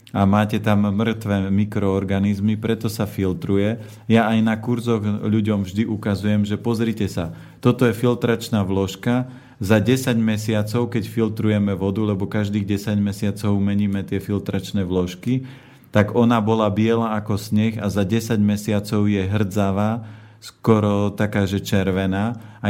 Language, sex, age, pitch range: Slovak, male, 40-59, 100-115 Hz